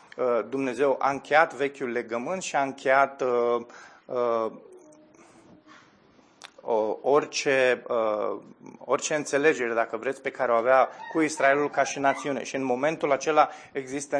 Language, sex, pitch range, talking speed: Romanian, male, 130-160 Hz, 130 wpm